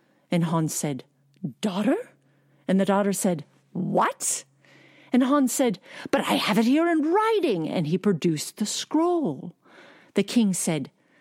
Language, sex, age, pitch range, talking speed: English, female, 50-69, 170-260 Hz, 145 wpm